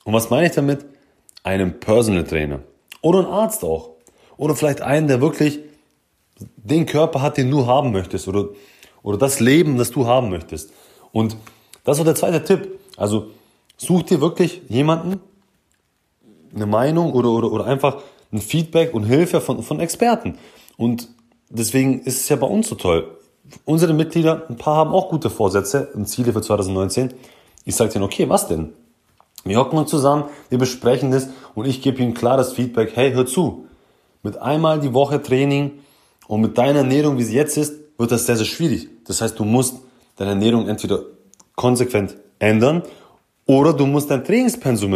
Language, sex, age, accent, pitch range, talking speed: German, male, 30-49, German, 110-150 Hz, 175 wpm